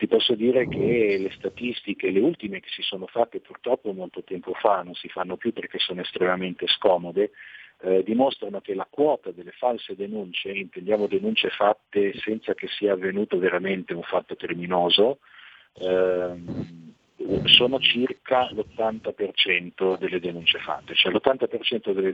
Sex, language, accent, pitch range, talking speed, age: male, Italian, native, 90-125 Hz, 140 wpm, 50-69